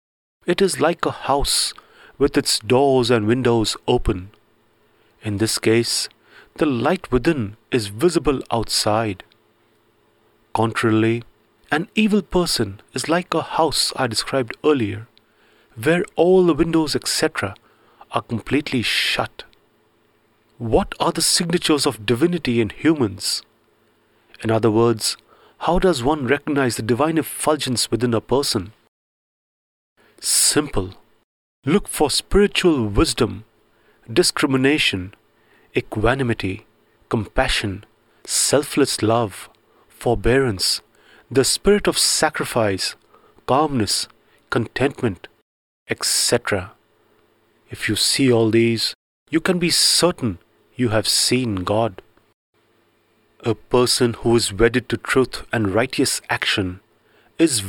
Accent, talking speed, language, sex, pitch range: Indian, 105 wpm, English, male, 110-145 Hz